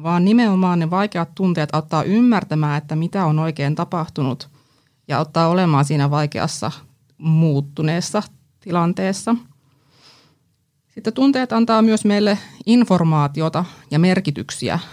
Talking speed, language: 110 wpm, Finnish